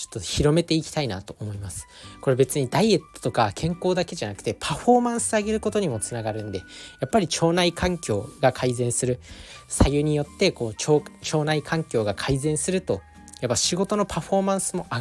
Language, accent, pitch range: Japanese, native, 110-160 Hz